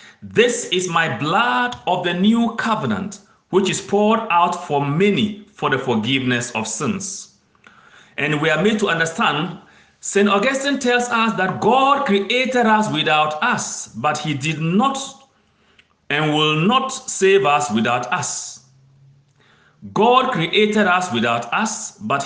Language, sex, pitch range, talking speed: English, male, 135-205 Hz, 140 wpm